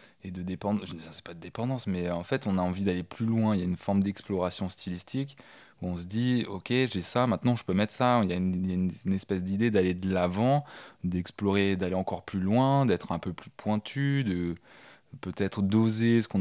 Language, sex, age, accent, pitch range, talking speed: French, male, 20-39, French, 90-110 Hz, 235 wpm